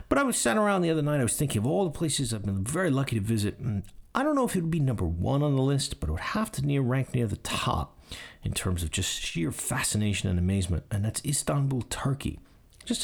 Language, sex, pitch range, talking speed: English, male, 95-140 Hz, 260 wpm